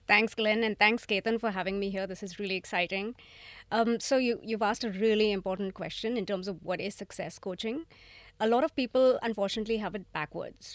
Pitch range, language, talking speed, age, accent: 190-225 Hz, English, 200 wpm, 30-49, Indian